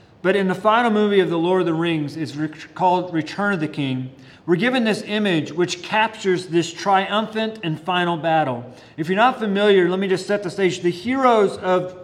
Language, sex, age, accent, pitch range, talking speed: English, male, 40-59, American, 175-220 Hz, 205 wpm